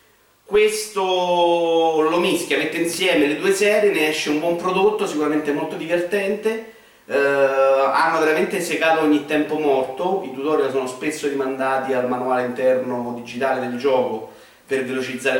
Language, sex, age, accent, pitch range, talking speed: Italian, male, 30-49, native, 130-170 Hz, 140 wpm